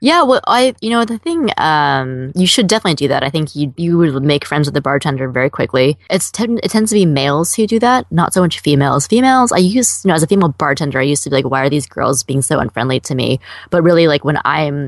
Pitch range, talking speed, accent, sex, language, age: 140-175 Hz, 270 wpm, American, female, English, 20-39